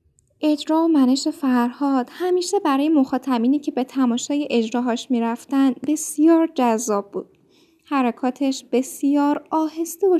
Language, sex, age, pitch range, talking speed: Persian, female, 10-29, 245-310 Hz, 120 wpm